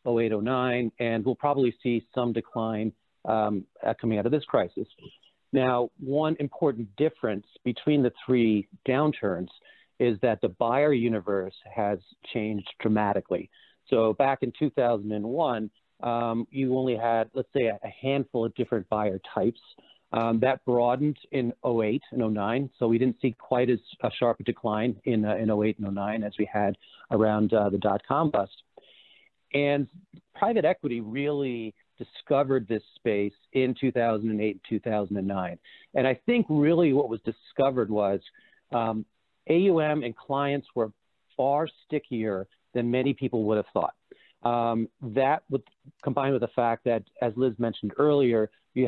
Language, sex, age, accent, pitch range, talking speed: English, male, 40-59, American, 110-130 Hz, 150 wpm